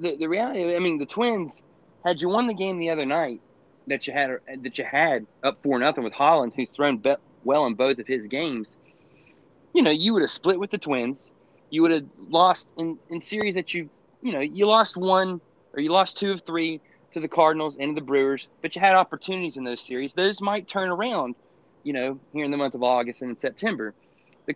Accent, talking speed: American, 225 wpm